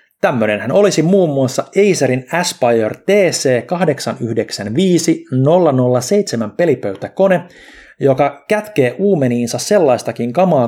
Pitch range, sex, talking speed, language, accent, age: 120-165 Hz, male, 85 wpm, Finnish, native, 30-49